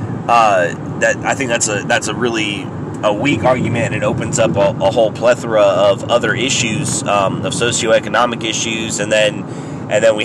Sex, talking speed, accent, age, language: male, 180 wpm, American, 30-49, English